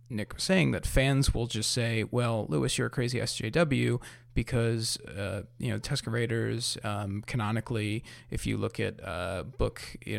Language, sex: English, male